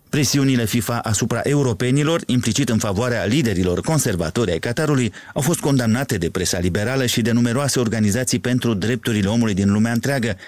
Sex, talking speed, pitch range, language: male, 155 wpm, 110-135 Hz, Romanian